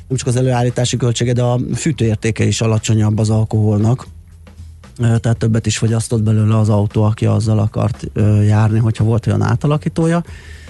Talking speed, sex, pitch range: 150 wpm, male, 110-125 Hz